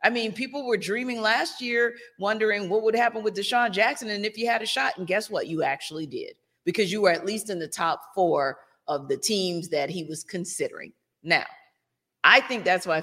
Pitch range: 165-235 Hz